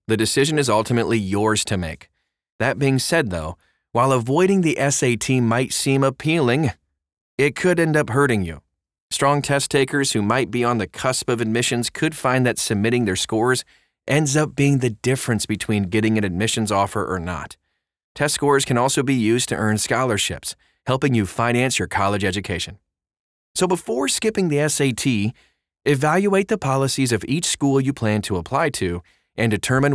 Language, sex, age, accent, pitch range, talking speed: English, male, 30-49, American, 100-140 Hz, 170 wpm